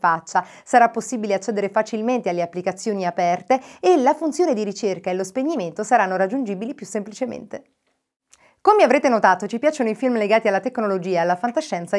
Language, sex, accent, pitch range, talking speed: Italian, female, native, 185-240 Hz, 160 wpm